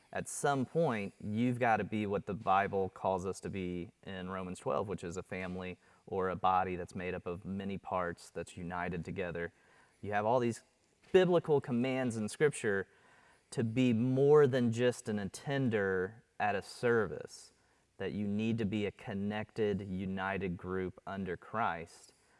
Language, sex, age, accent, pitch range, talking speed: English, male, 30-49, American, 100-130 Hz, 165 wpm